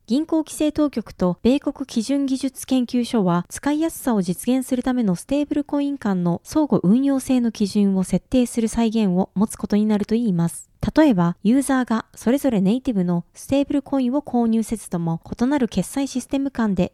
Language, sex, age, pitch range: Japanese, female, 20-39, 195-275 Hz